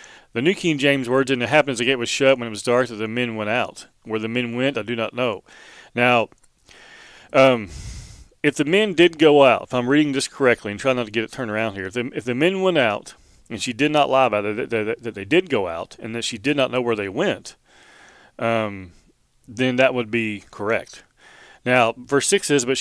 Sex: male